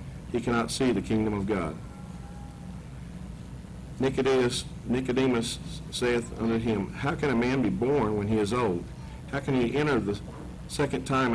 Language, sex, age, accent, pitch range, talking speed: English, male, 50-69, American, 105-125 Hz, 155 wpm